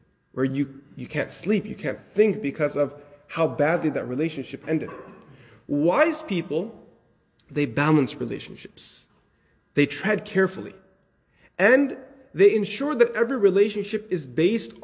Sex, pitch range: male, 140-190 Hz